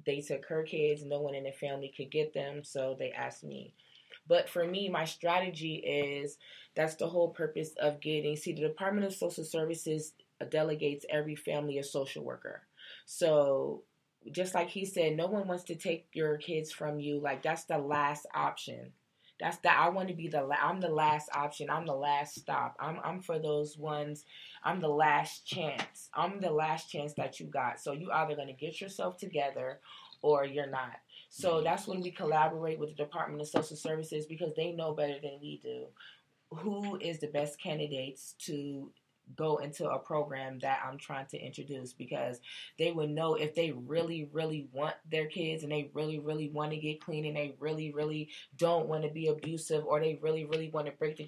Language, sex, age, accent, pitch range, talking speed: English, female, 20-39, American, 145-160 Hz, 200 wpm